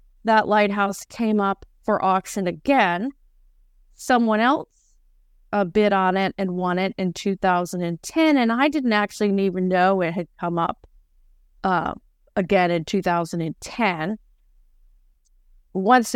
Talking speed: 125 wpm